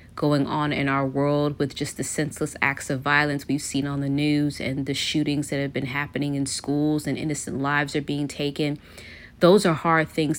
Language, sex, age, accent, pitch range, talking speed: English, female, 30-49, American, 140-155 Hz, 210 wpm